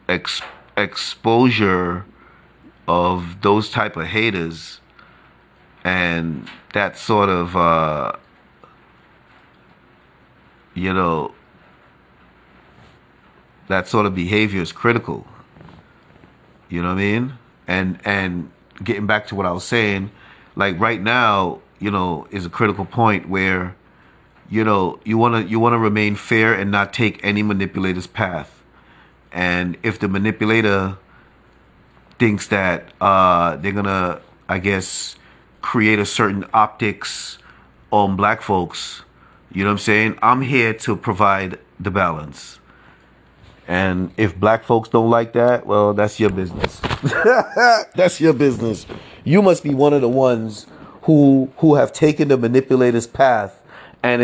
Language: English